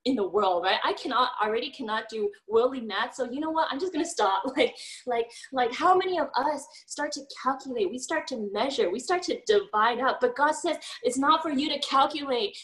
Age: 10-29